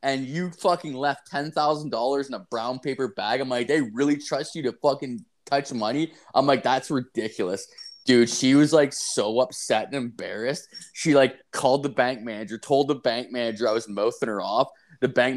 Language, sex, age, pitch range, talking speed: English, male, 20-39, 115-140 Hz, 190 wpm